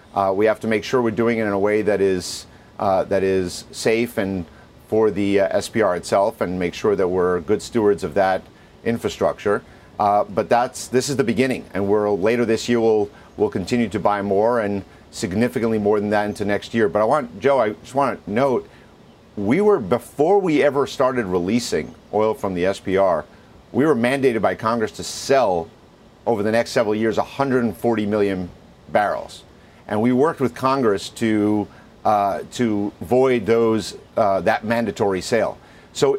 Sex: male